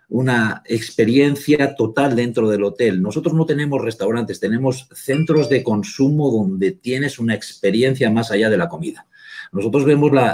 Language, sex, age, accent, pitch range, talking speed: Spanish, male, 40-59, Spanish, 110-135 Hz, 150 wpm